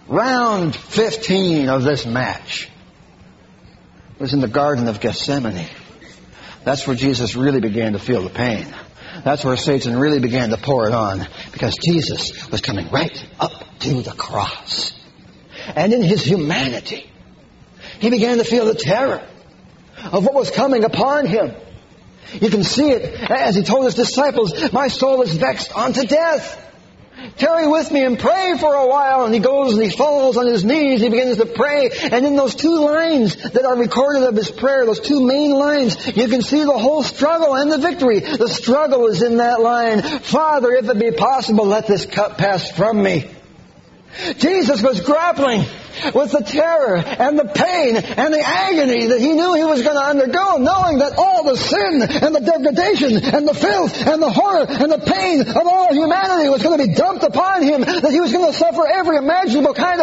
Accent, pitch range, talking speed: American, 220-310 Hz, 185 wpm